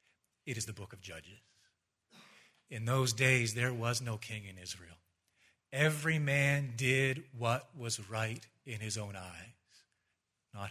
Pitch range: 120-170 Hz